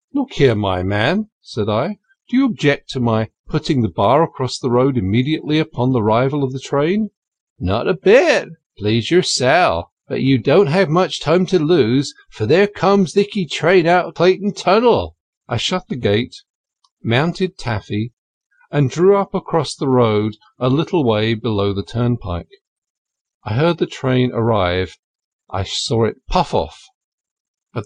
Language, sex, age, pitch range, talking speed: English, male, 50-69, 120-185 Hz, 165 wpm